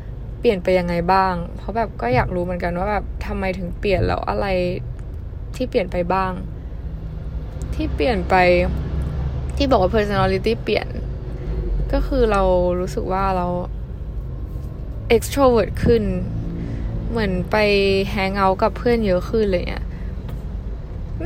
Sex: female